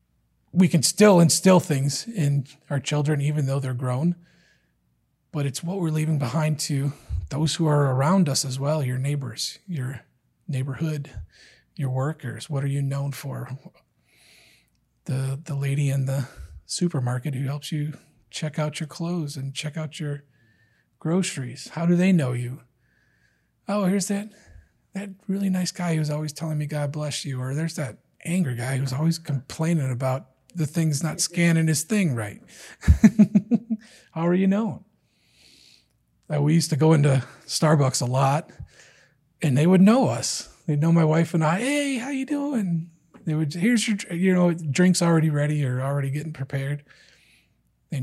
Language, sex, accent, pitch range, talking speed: English, male, American, 135-175 Hz, 165 wpm